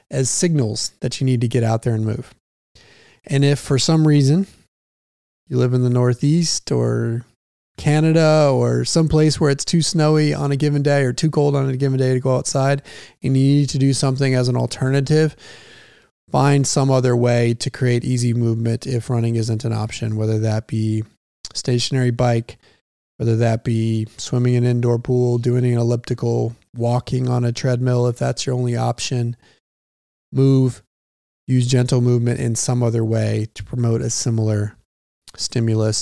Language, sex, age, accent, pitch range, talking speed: English, male, 20-39, American, 115-135 Hz, 170 wpm